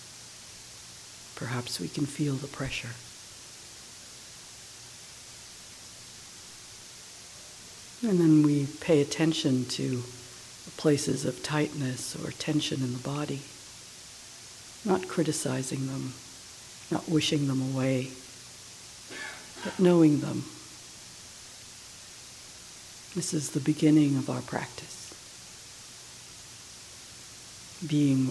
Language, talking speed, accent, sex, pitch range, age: English, 80 wpm, American, female, 125-150 Hz, 60-79